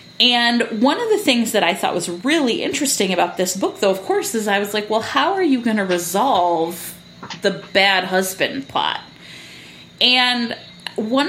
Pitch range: 185-270 Hz